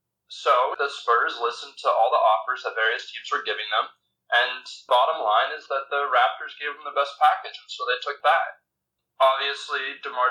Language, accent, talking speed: English, American, 190 wpm